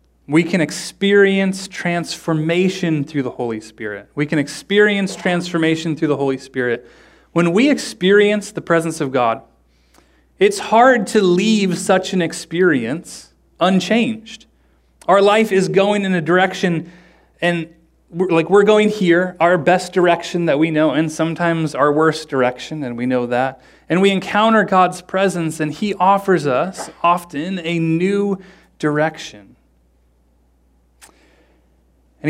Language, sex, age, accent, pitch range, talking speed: English, male, 30-49, American, 140-185 Hz, 135 wpm